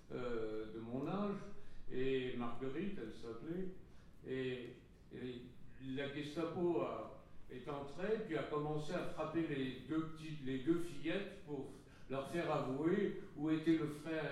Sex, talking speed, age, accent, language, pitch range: male, 145 wpm, 60-79, French, French, 120-160 Hz